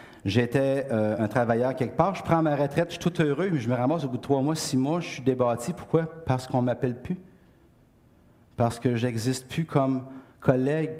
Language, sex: French, male